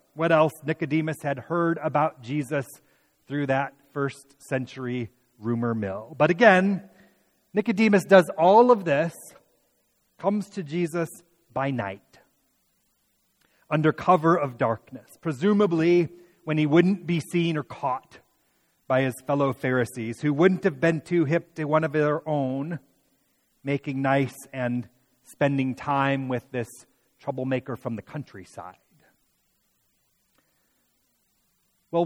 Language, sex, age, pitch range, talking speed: English, male, 30-49, 125-165 Hz, 120 wpm